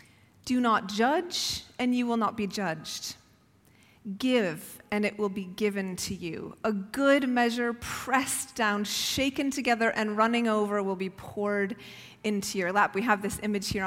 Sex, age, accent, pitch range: female, 30-49, American, 190-235 Hz